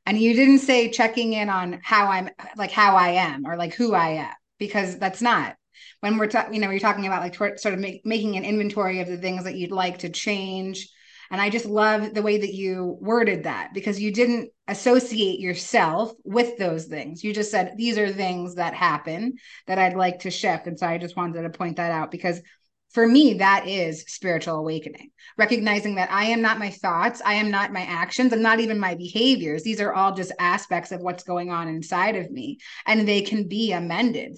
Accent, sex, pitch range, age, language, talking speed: American, female, 180-220 Hz, 20-39, English, 215 wpm